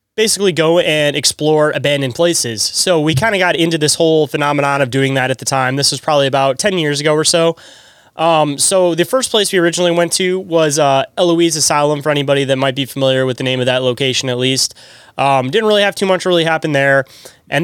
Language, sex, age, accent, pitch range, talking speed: English, male, 20-39, American, 135-165 Hz, 230 wpm